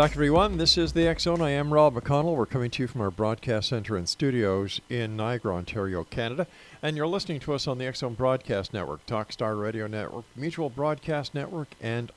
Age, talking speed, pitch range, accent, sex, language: 50-69, 200 wpm, 95-125 Hz, American, male, English